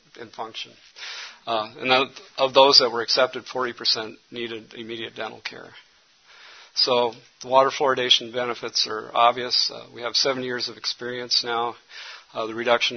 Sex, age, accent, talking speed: male, 50-69, American, 150 wpm